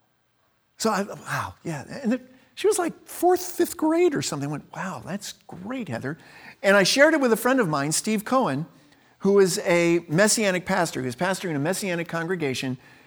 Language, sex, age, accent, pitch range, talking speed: English, male, 50-69, American, 135-220 Hz, 195 wpm